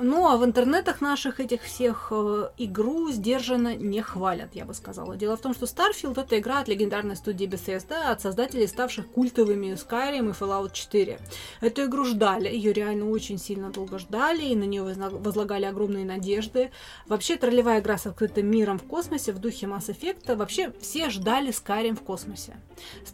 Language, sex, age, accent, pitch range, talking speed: Russian, female, 20-39, native, 195-245 Hz, 175 wpm